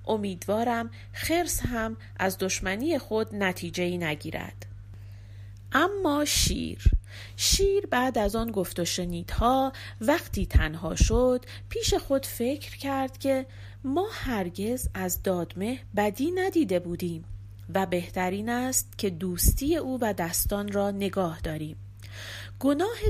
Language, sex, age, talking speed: Persian, female, 40-59, 110 wpm